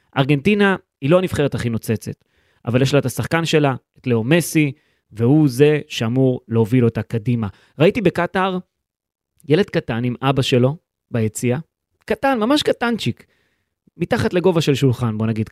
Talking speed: 145 wpm